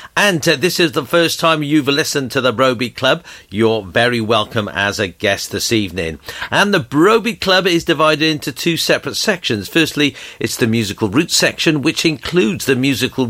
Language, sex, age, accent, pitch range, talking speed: English, male, 50-69, British, 115-165 Hz, 185 wpm